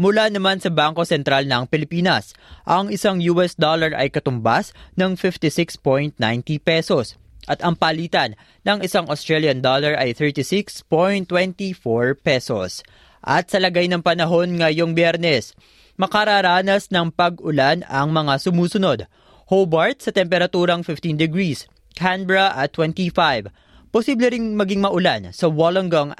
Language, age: Filipino, 20-39